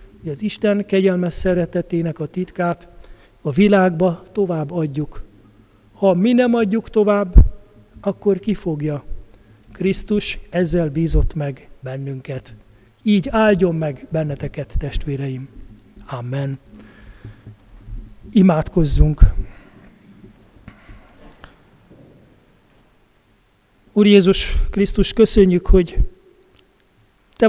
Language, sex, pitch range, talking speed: Hungarian, male, 120-195 Hz, 80 wpm